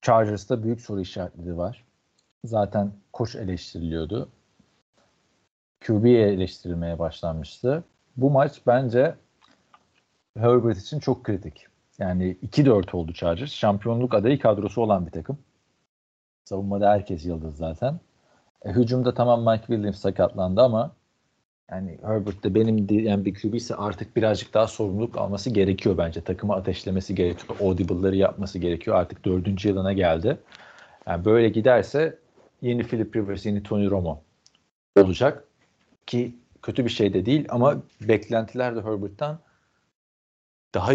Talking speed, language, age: 125 wpm, Turkish, 50-69